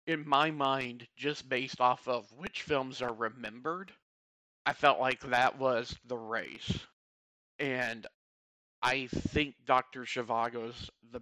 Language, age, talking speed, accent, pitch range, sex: English, 40-59, 130 wpm, American, 110-140 Hz, male